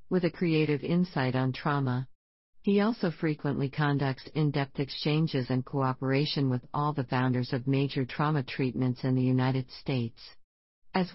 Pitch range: 130-165 Hz